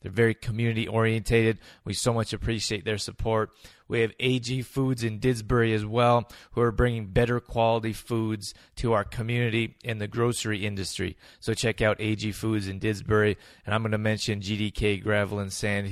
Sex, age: male, 20-39